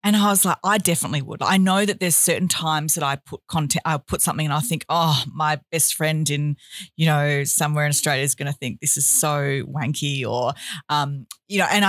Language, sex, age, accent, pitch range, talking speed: English, female, 40-59, Australian, 145-190 Hz, 230 wpm